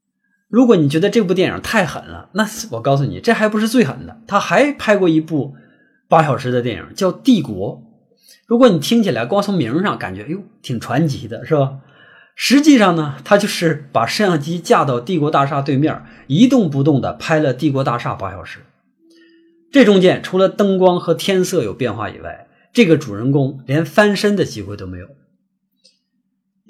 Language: Chinese